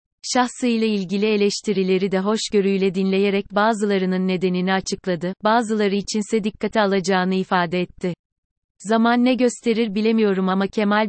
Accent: native